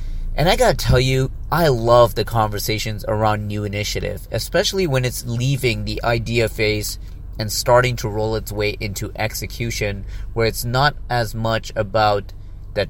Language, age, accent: English, 30-49, American